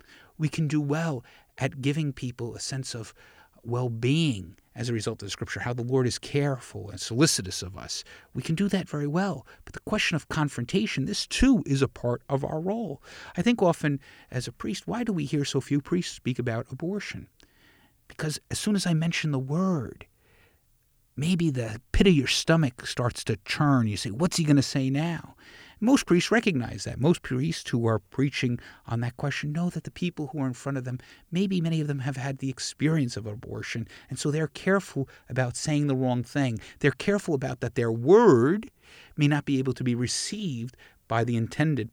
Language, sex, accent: English, male, American